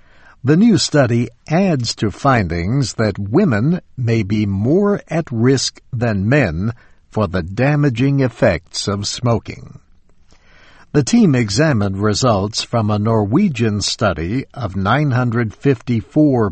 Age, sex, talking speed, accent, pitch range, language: 60-79, male, 115 wpm, American, 100-135 Hz, English